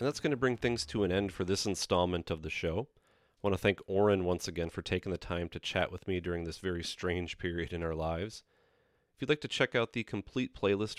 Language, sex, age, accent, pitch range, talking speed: English, male, 30-49, American, 90-105 Hz, 255 wpm